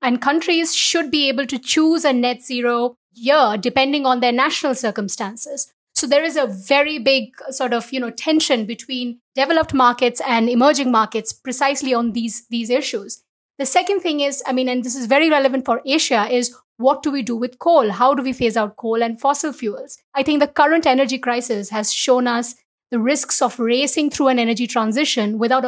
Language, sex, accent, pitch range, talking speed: English, female, Indian, 235-280 Hz, 200 wpm